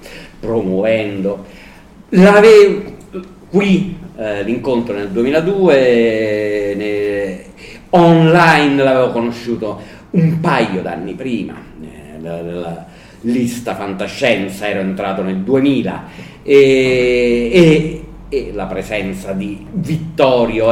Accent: native